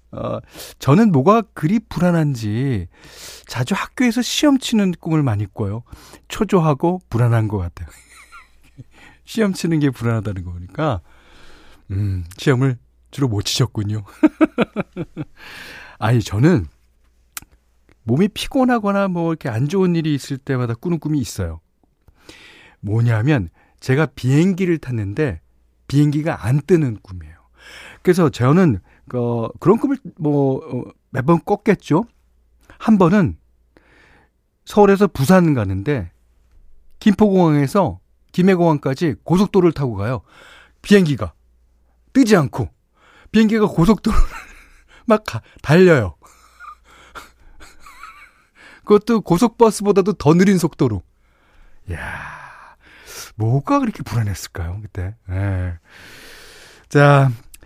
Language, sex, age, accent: Korean, male, 40-59, native